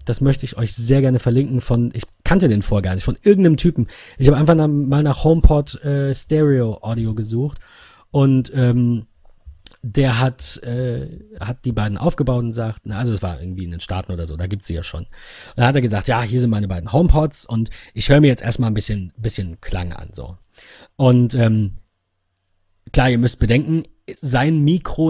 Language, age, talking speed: German, 40-59, 200 wpm